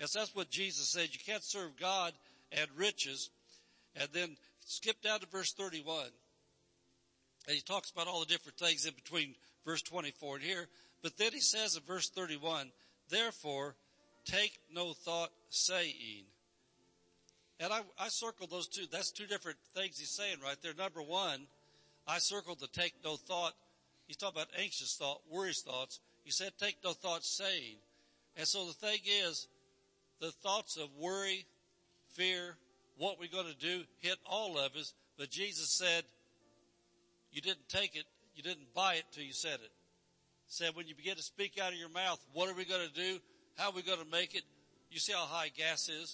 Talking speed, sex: 185 wpm, male